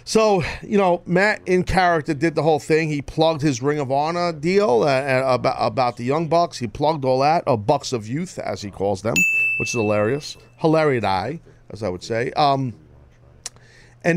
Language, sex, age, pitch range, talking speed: English, male, 40-59, 120-160 Hz, 190 wpm